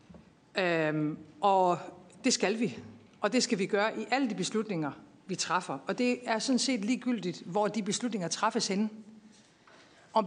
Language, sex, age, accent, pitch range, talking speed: Danish, female, 50-69, native, 175-220 Hz, 165 wpm